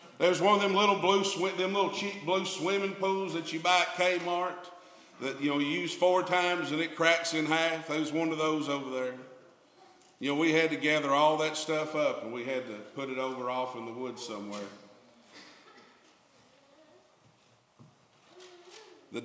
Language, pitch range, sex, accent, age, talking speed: English, 130-200 Hz, male, American, 50-69, 180 wpm